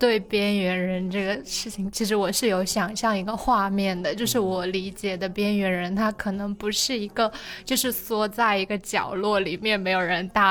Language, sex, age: Chinese, female, 20-39